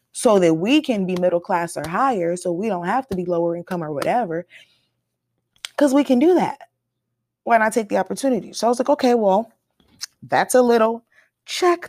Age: 20-39